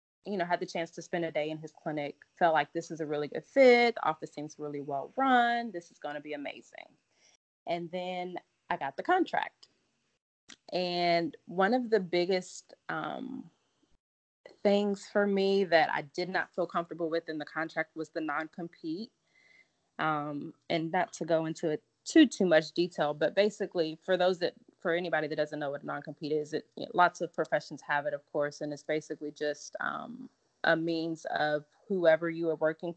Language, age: English, 20-39